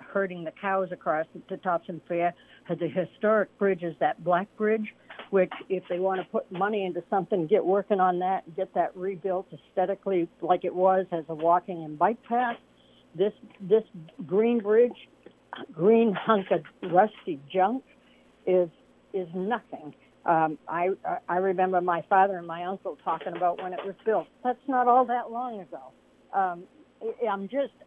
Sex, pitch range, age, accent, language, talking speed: female, 175-215 Hz, 60-79, American, English, 165 wpm